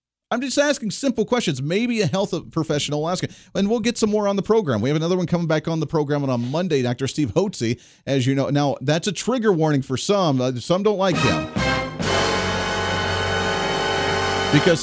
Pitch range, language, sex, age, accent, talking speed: 120-165 Hz, English, male, 40-59, American, 200 wpm